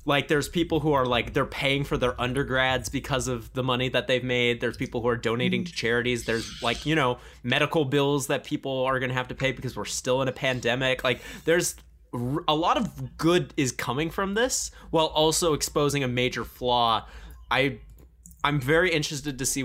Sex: male